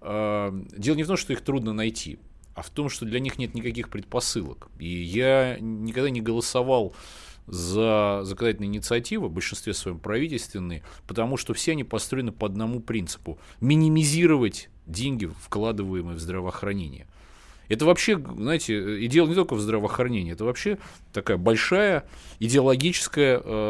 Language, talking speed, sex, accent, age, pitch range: Russian, 140 wpm, male, native, 30-49, 100-130 Hz